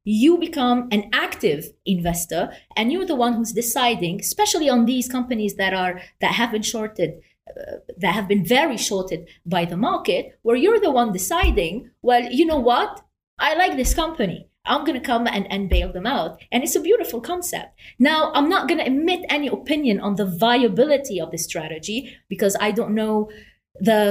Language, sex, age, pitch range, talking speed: English, female, 30-49, 185-260 Hz, 190 wpm